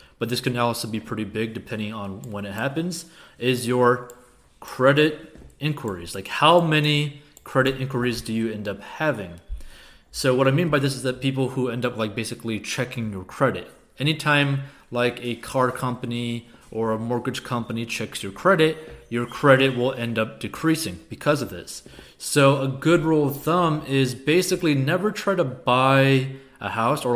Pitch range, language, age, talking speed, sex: 110-135 Hz, English, 30-49, 175 wpm, male